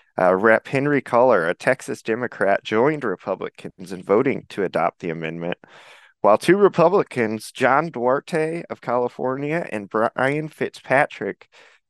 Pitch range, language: 105-130 Hz, English